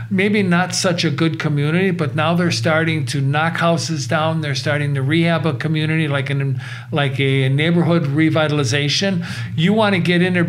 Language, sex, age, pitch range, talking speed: English, male, 50-69, 135-160 Hz, 185 wpm